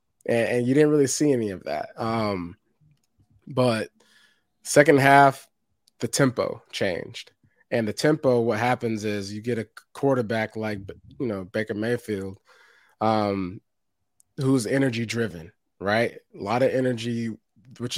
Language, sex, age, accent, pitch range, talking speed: English, male, 20-39, American, 110-135 Hz, 135 wpm